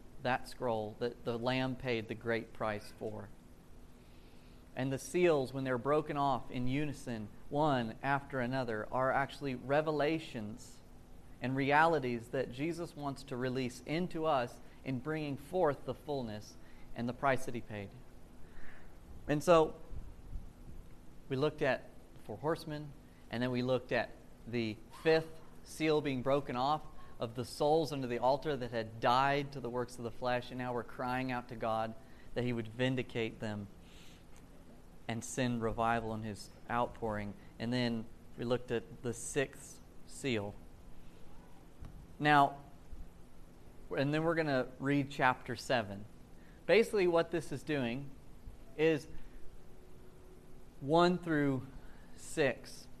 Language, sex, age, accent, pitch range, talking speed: English, male, 30-49, American, 110-140 Hz, 140 wpm